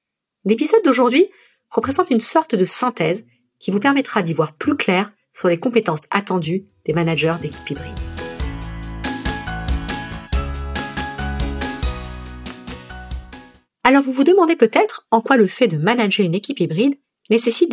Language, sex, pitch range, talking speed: French, female, 170-240 Hz, 125 wpm